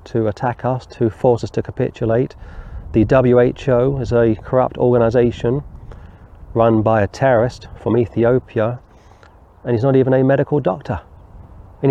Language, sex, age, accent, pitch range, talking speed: English, male, 30-49, British, 105-130 Hz, 140 wpm